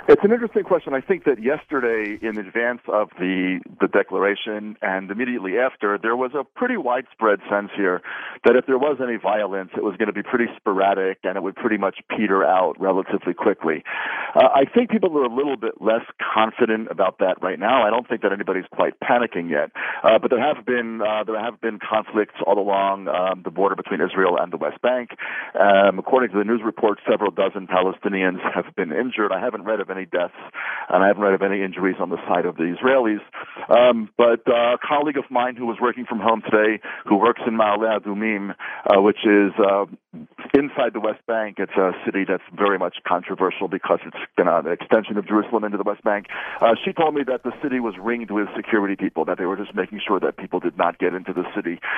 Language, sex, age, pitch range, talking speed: English, male, 40-59, 100-130 Hz, 220 wpm